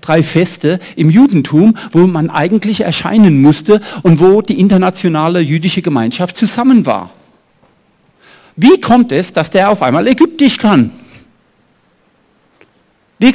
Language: German